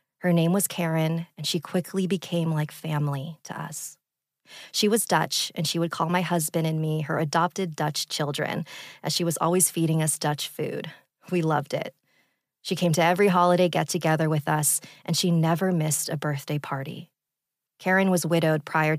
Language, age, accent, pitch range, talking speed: English, 30-49, American, 150-175 Hz, 180 wpm